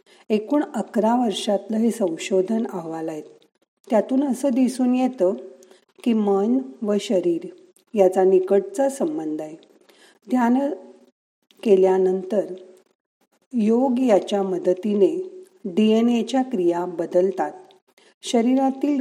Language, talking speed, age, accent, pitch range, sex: Marathi, 80 wpm, 50-69, native, 190-260 Hz, female